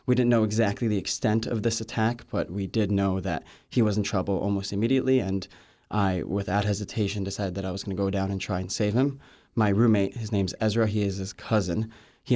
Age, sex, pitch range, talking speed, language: 20-39, male, 100-115 Hz, 230 wpm, English